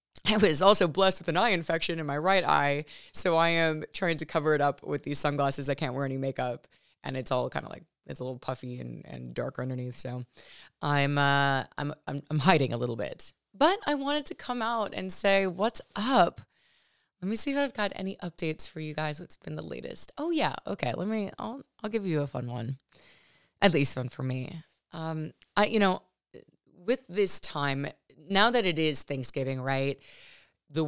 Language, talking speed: English, 210 wpm